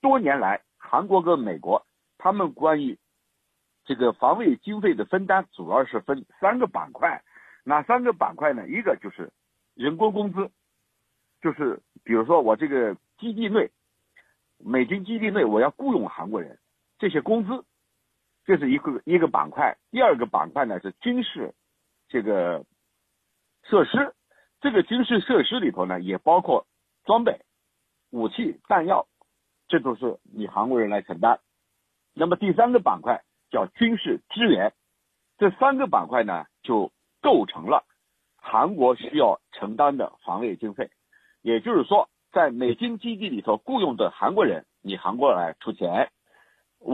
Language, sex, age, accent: Chinese, male, 50-69, native